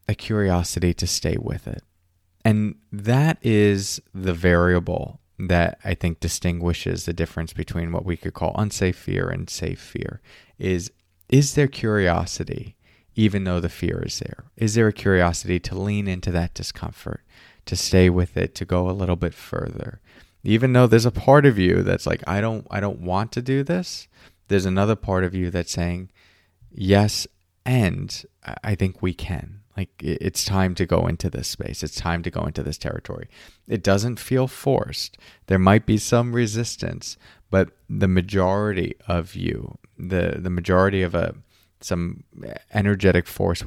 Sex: male